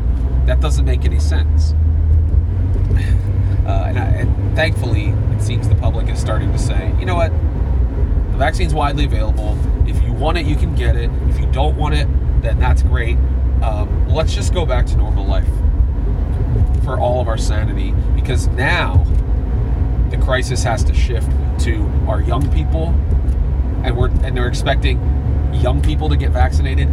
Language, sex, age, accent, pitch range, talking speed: English, male, 30-49, American, 70-80 Hz, 165 wpm